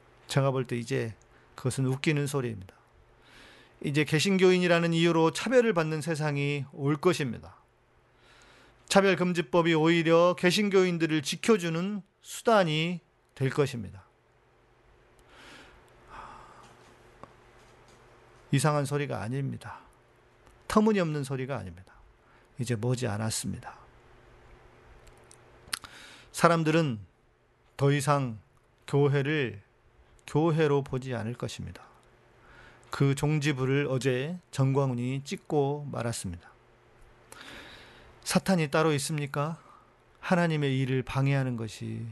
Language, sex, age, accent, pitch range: Korean, male, 40-59, native, 120-165 Hz